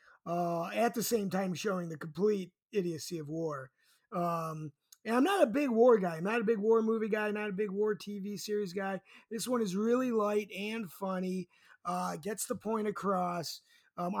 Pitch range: 175-230 Hz